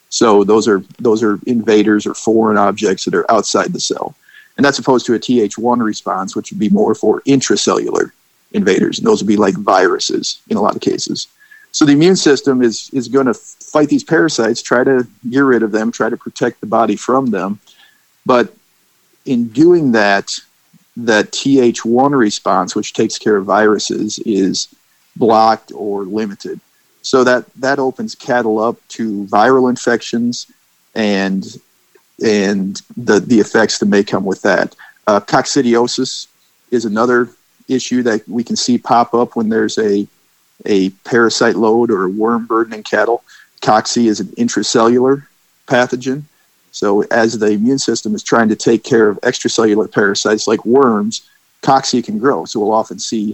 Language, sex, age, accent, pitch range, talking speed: English, male, 50-69, American, 110-135 Hz, 165 wpm